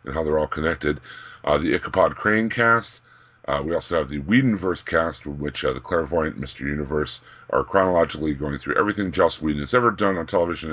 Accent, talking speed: American, 200 wpm